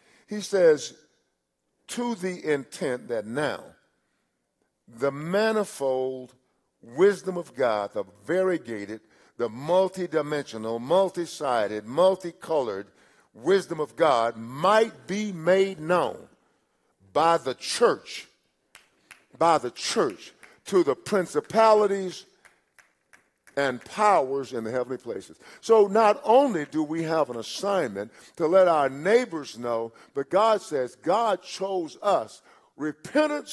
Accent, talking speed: American, 105 wpm